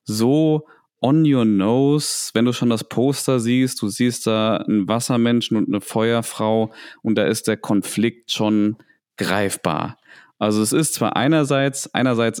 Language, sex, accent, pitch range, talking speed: German, male, German, 105-145 Hz, 150 wpm